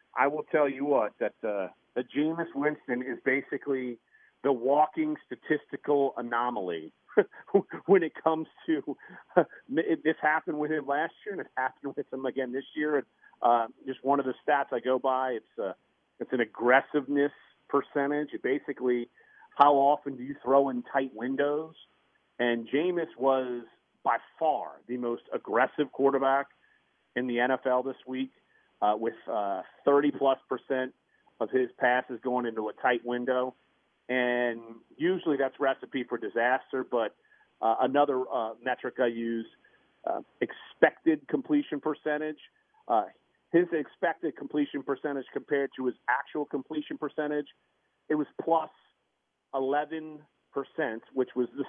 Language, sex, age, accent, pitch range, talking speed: English, male, 40-59, American, 125-150 Hz, 140 wpm